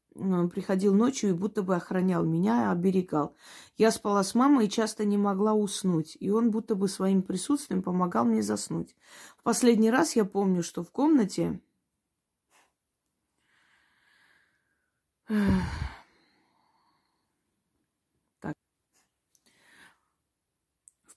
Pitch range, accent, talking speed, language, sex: 180-210 Hz, native, 100 wpm, Russian, female